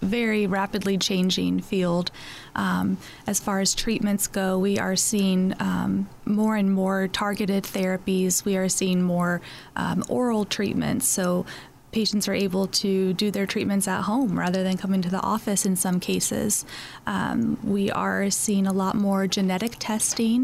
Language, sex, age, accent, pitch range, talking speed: English, female, 30-49, American, 190-220 Hz, 160 wpm